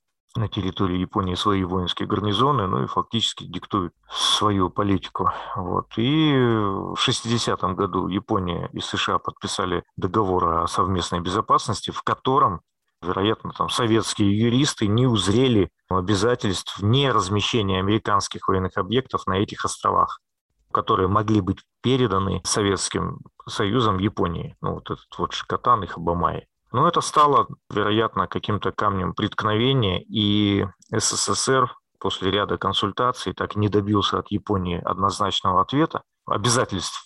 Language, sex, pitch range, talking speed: Russian, male, 95-115 Hz, 125 wpm